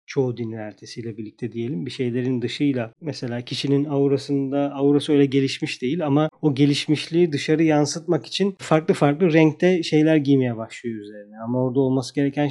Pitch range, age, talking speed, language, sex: 125-145 Hz, 40-59, 155 wpm, Turkish, male